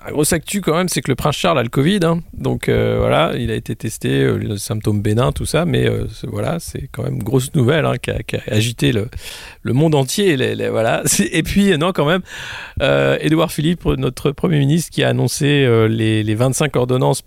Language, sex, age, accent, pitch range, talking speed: French, male, 40-59, French, 120-155 Hz, 235 wpm